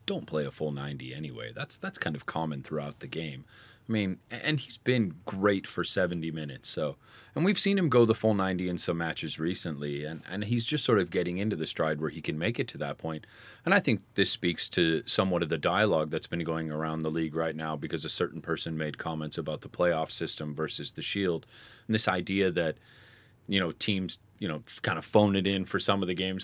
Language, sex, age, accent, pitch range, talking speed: English, male, 30-49, American, 80-105 Hz, 240 wpm